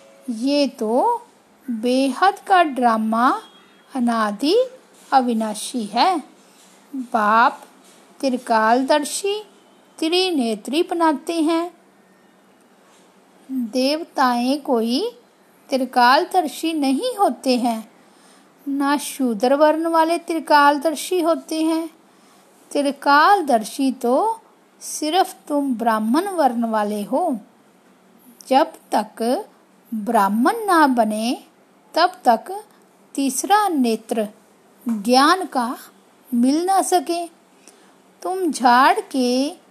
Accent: native